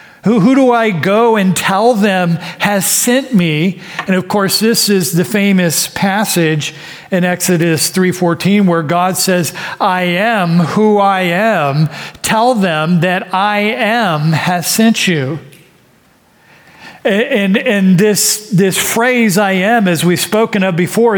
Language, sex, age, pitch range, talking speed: English, male, 40-59, 165-215 Hz, 140 wpm